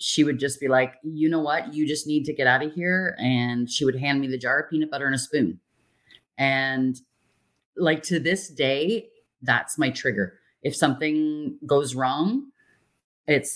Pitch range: 130-165 Hz